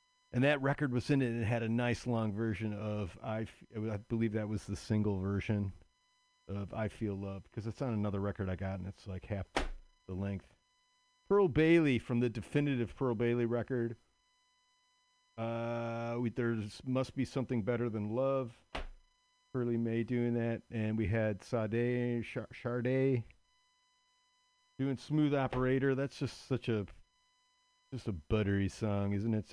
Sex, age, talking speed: male, 40-59, 160 wpm